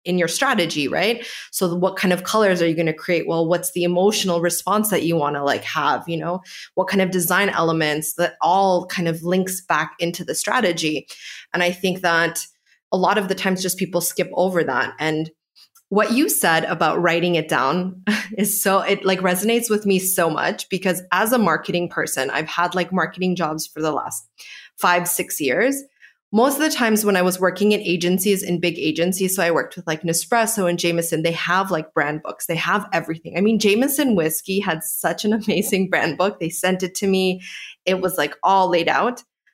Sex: female